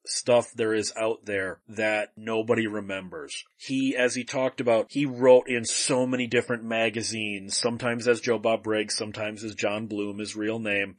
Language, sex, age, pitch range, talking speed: English, male, 30-49, 115-140 Hz, 175 wpm